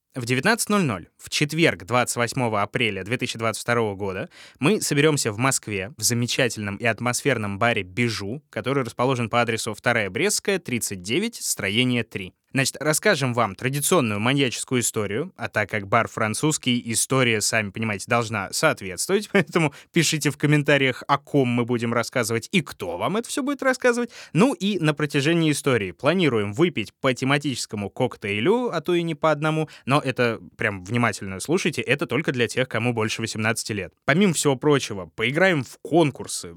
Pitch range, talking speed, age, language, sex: 115-155 Hz, 155 wpm, 20-39, Russian, male